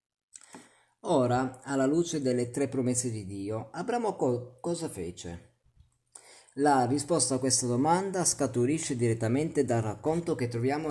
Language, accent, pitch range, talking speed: Italian, native, 115-135 Hz, 125 wpm